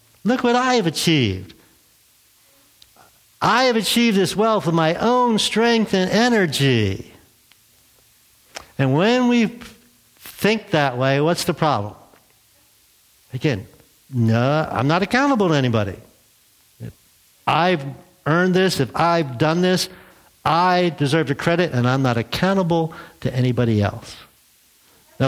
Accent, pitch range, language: American, 125-180 Hz, English